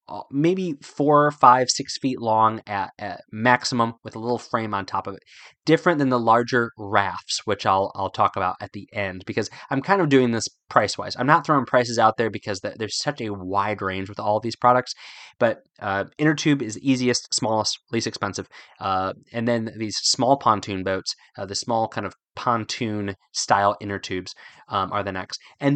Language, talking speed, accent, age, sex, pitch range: English, 200 wpm, American, 20-39, male, 100-130 Hz